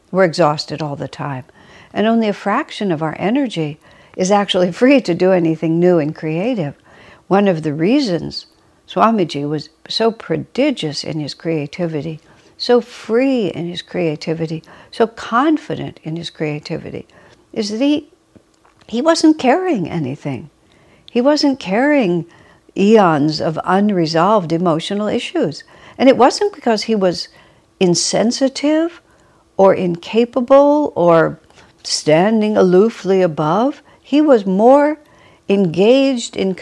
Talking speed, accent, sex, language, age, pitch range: 120 wpm, American, female, English, 60-79, 165-245 Hz